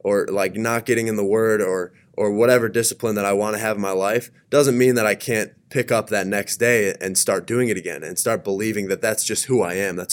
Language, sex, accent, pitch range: English, male, American, 100-120 Hz